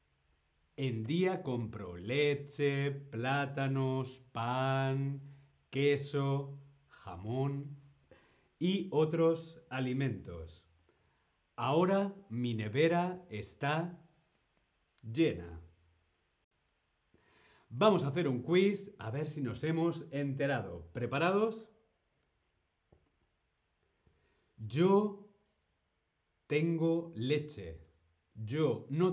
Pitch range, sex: 110-170 Hz, male